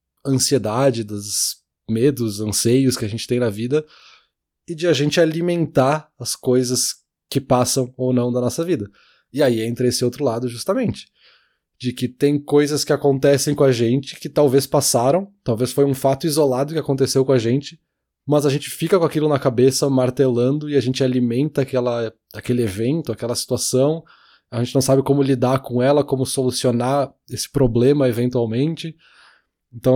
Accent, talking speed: Brazilian, 170 wpm